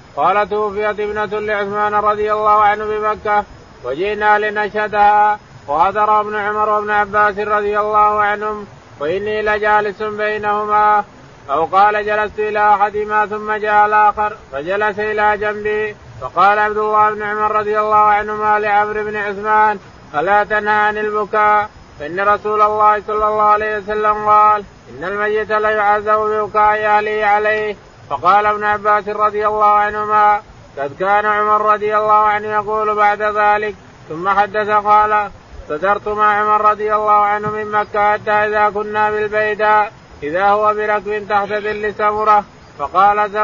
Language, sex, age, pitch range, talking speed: Arabic, male, 20-39, 210-215 Hz, 140 wpm